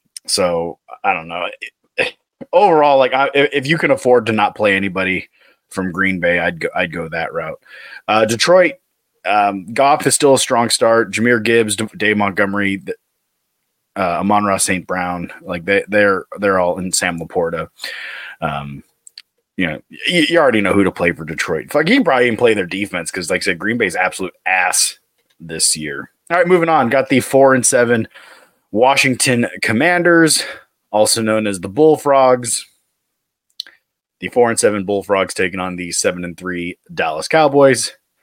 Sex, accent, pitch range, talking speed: male, American, 95-140 Hz, 170 wpm